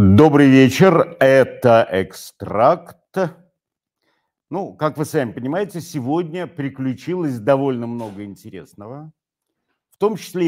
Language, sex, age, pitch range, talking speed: Russian, male, 50-69, 115-155 Hz, 95 wpm